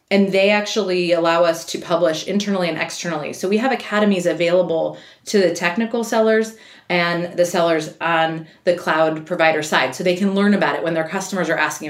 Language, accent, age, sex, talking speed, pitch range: English, American, 30-49, female, 190 wpm, 165-200 Hz